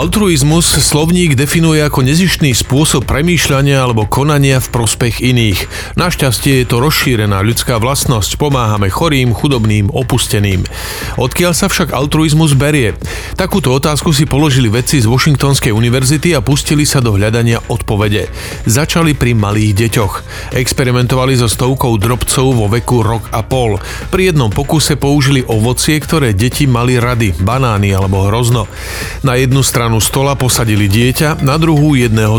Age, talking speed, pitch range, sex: 40-59, 140 wpm, 110-145 Hz, male